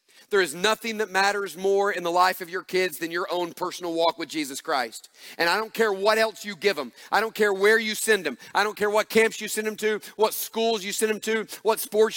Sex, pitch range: male, 185-225 Hz